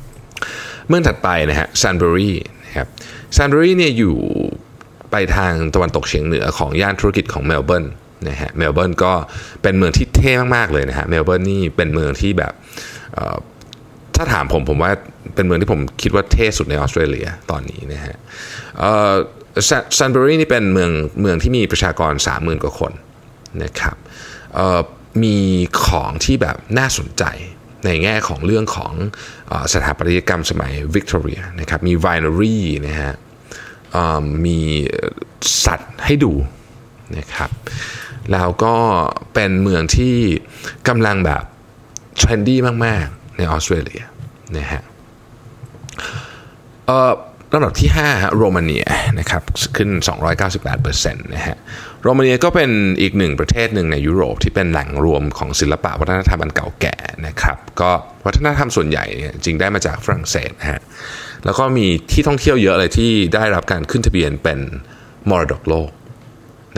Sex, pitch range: male, 80-115 Hz